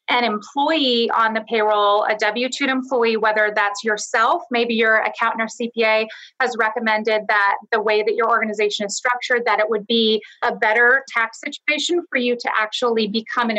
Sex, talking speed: female, 175 wpm